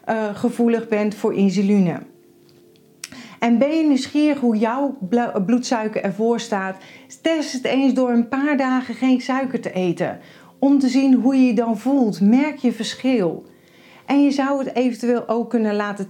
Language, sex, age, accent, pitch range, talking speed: Dutch, female, 40-59, Dutch, 205-265 Hz, 160 wpm